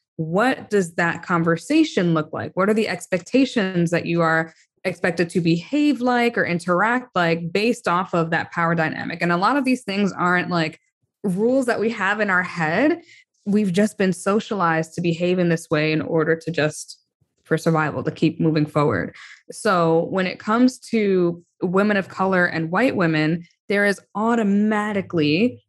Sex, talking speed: female, 175 wpm